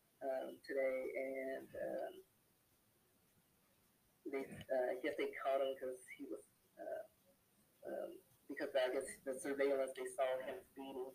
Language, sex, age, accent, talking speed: English, female, 40-59, American, 120 wpm